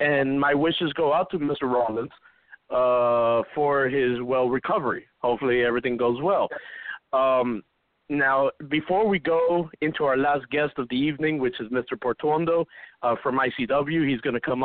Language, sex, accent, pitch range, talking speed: English, male, American, 125-155 Hz, 165 wpm